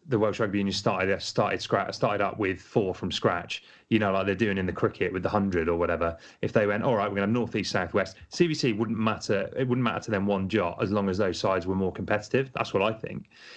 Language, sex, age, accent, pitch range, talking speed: English, male, 30-49, British, 95-115 Hz, 255 wpm